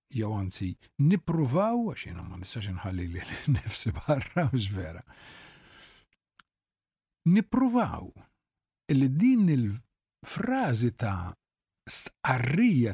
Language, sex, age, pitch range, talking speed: English, male, 50-69, 100-150 Hz, 70 wpm